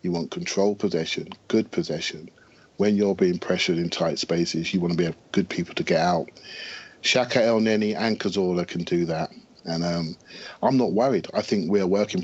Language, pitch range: English, 90-125 Hz